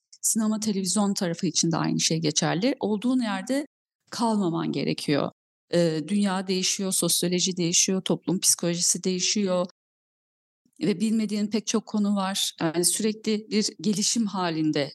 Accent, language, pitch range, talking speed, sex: native, Turkish, 180-255 Hz, 120 wpm, female